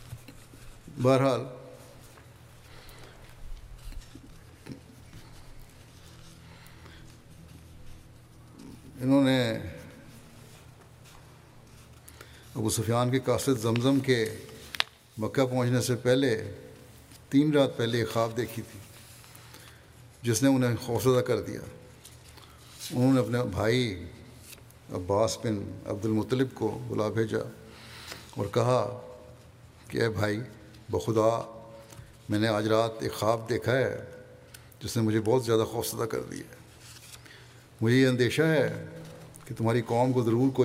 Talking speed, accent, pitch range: 85 wpm, Indian, 110-125 Hz